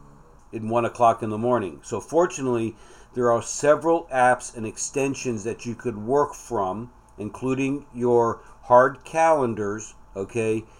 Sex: male